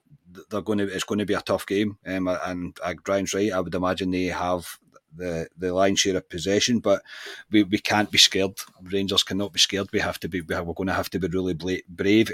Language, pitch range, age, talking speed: English, 90-105 Hz, 30-49, 230 wpm